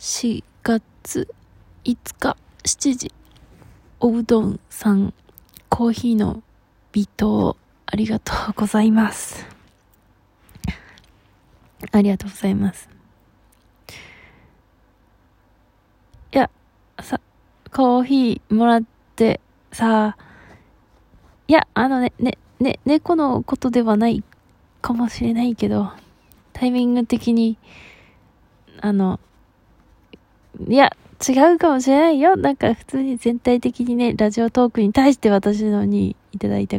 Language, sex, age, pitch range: Japanese, female, 20-39, 195-245 Hz